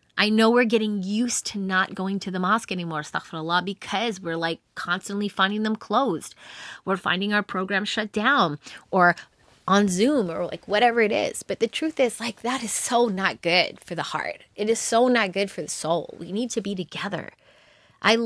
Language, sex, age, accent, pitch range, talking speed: English, female, 20-39, American, 185-235 Hz, 195 wpm